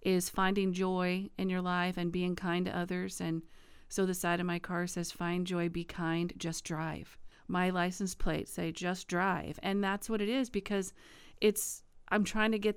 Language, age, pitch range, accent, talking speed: English, 40-59, 175-205 Hz, American, 195 wpm